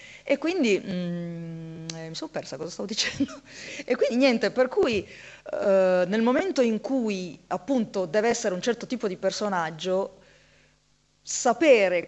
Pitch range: 180-255 Hz